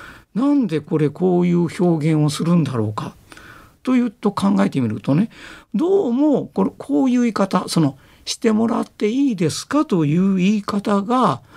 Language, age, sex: Japanese, 50-69, male